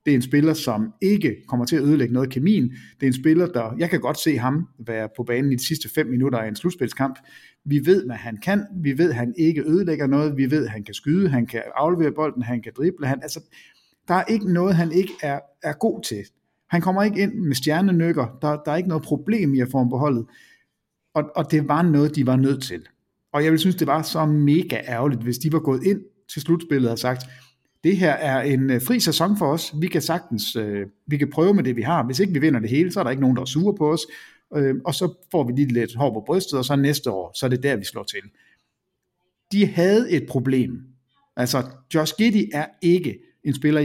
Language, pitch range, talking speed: Danish, 125-170 Hz, 250 wpm